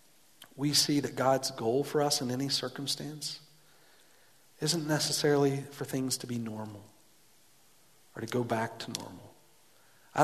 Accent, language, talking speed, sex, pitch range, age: American, English, 140 wpm, male, 120-145 Hz, 40-59